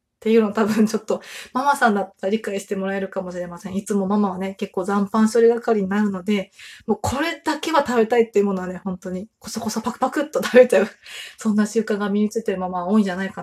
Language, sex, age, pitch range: Japanese, female, 20-39, 195-235 Hz